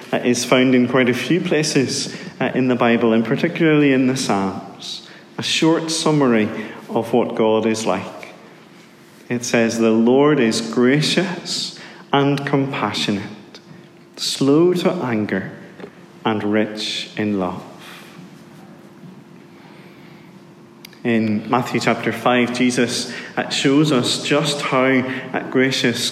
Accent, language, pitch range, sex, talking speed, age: British, English, 115-140 Hz, male, 115 wpm, 30-49